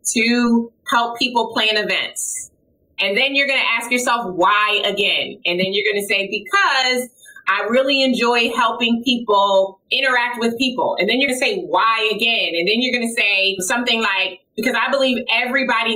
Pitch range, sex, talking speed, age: 210-275 Hz, female, 185 wpm, 30-49